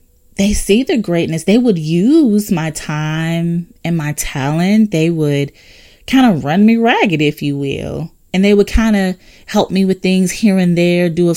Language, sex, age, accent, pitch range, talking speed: English, female, 20-39, American, 150-200 Hz, 190 wpm